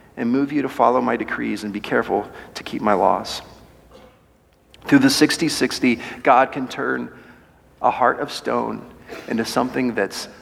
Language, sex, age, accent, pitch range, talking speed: English, male, 40-59, American, 105-150 Hz, 155 wpm